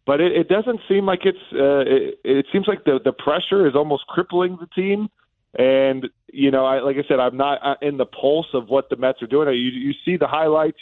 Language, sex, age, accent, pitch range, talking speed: English, male, 40-59, American, 125-155 Hz, 245 wpm